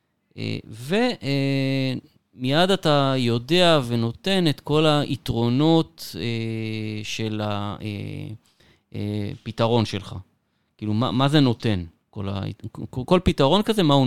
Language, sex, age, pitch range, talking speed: Hebrew, male, 30-49, 105-140 Hz, 115 wpm